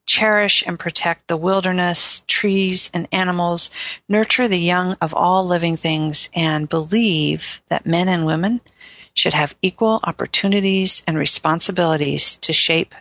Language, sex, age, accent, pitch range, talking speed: English, female, 50-69, American, 160-195 Hz, 135 wpm